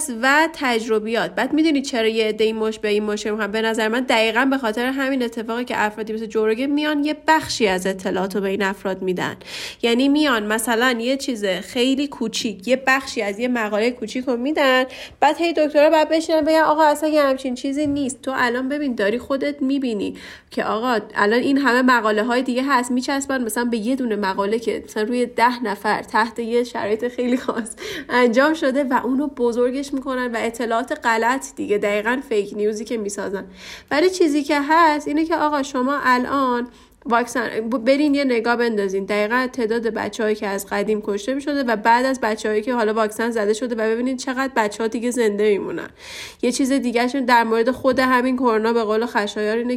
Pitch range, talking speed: 220-270 Hz, 185 wpm